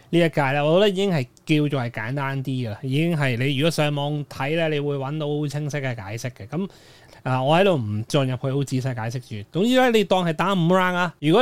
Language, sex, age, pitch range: Chinese, male, 20-39, 125-160 Hz